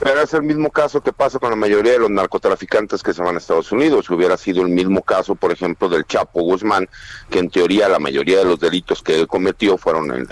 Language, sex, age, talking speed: Spanish, male, 50-69, 245 wpm